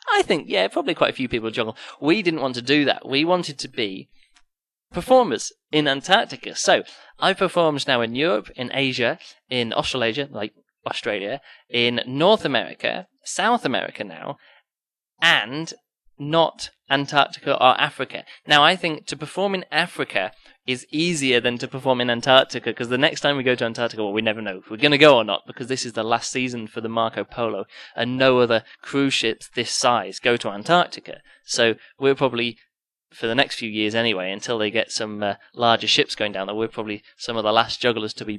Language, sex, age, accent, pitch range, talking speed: English, male, 20-39, British, 115-145 Hz, 200 wpm